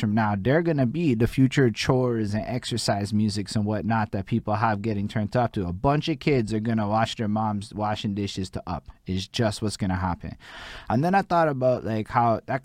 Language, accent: English, American